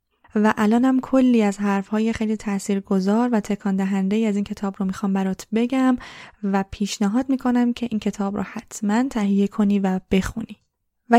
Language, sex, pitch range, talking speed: Persian, female, 205-235 Hz, 165 wpm